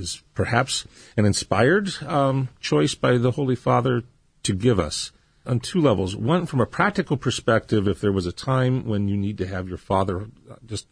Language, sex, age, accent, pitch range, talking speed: English, male, 40-59, American, 95-130 Hz, 185 wpm